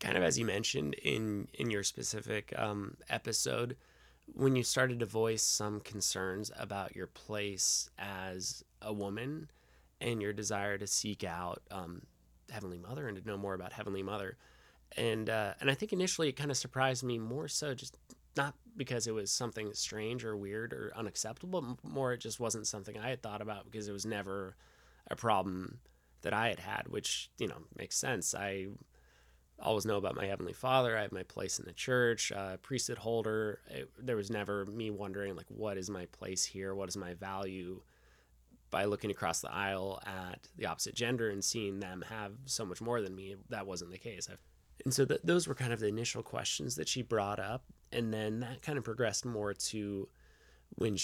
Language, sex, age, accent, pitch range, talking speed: English, male, 20-39, American, 95-120 Hz, 195 wpm